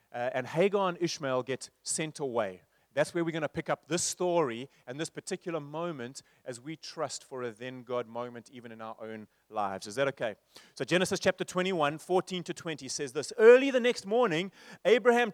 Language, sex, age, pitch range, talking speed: English, male, 30-49, 160-225 Hz, 195 wpm